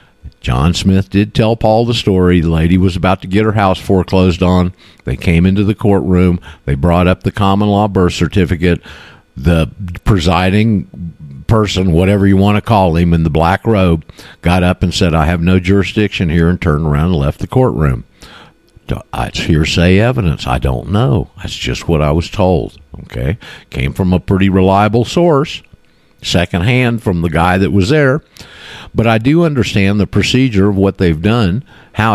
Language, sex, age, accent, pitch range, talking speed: English, male, 50-69, American, 85-110 Hz, 180 wpm